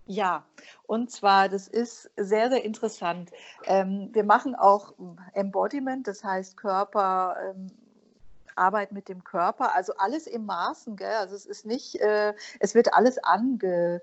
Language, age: German, 50-69